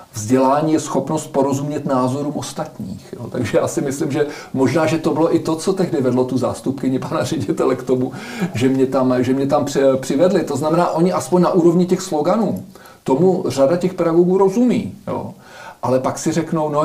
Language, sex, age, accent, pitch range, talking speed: Czech, male, 40-59, native, 130-170 Hz, 175 wpm